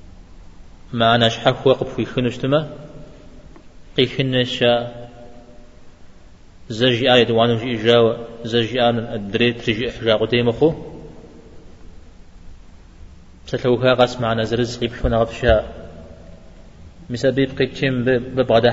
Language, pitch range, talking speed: Czech, 105-130 Hz, 50 wpm